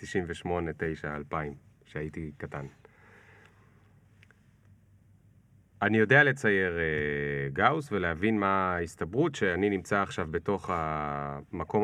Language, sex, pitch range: Hebrew, male, 95-120 Hz